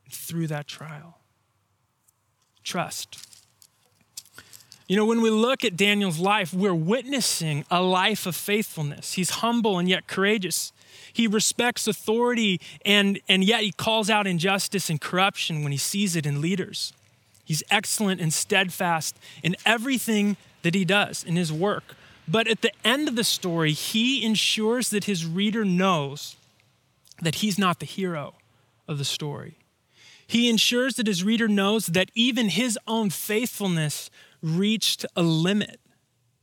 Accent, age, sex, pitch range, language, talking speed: American, 20-39, male, 145-200 Hz, English, 145 wpm